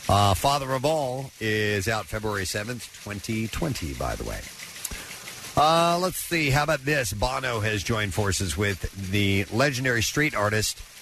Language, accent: English, American